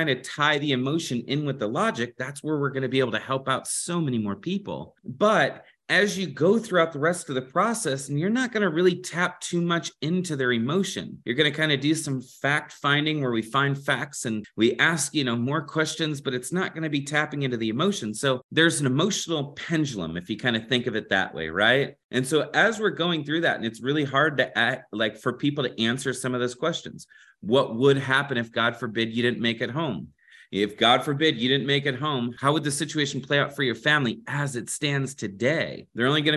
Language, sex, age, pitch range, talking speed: English, male, 30-49, 130-165 Hz, 240 wpm